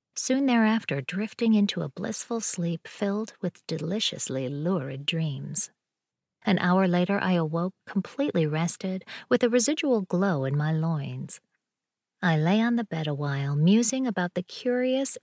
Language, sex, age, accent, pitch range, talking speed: English, female, 40-59, American, 165-215 Hz, 145 wpm